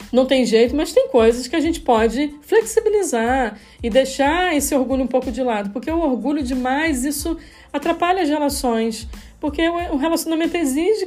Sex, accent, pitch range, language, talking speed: female, Brazilian, 235-310 Hz, Portuguese, 170 wpm